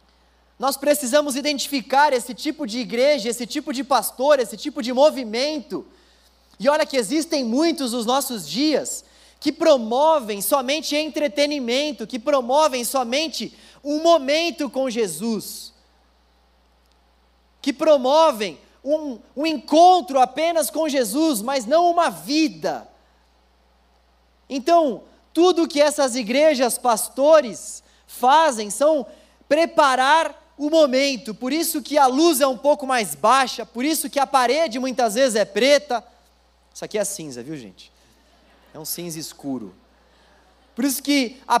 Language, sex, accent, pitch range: Portuguese, male, Brazilian, 235-295 Hz